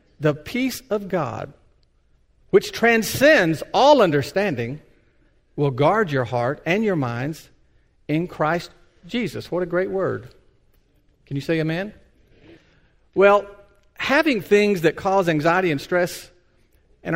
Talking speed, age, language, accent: 120 wpm, 50-69, English, American